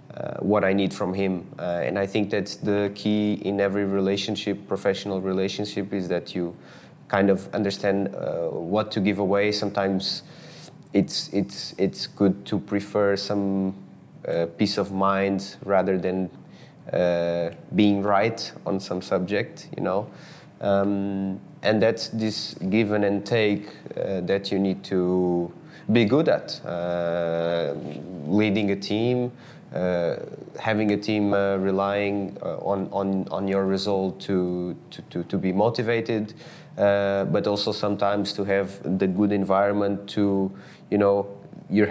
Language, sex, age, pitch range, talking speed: English, male, 20-39, 95-100 Hz, 145 wpm